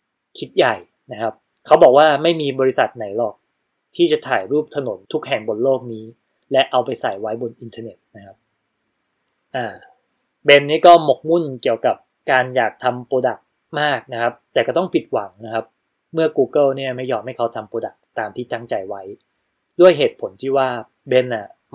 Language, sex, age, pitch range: Thai, male, 20-39, 115-150 Hz